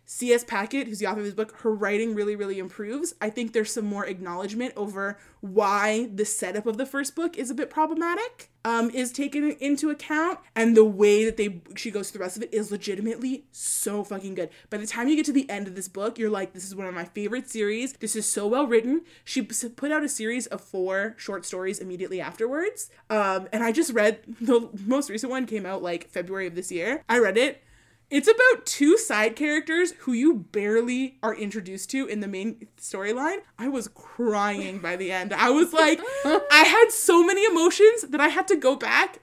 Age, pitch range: 20-39, 205-300 Hz